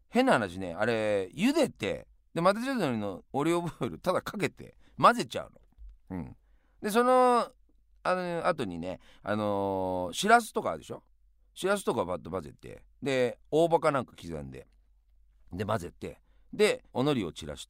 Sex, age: male, 40-59